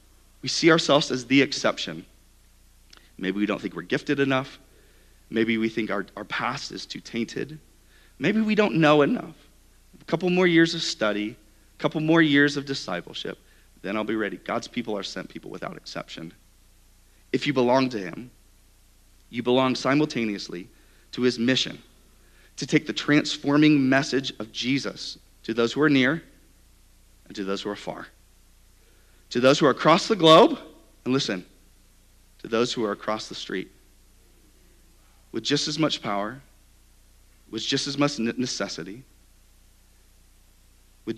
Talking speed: 155 wpm